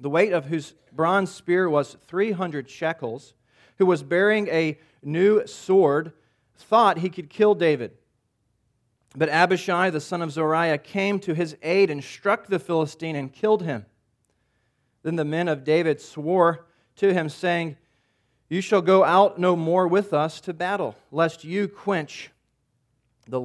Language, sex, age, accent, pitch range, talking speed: English, male, 40-59, American, 130-175 Hz, 155 wpm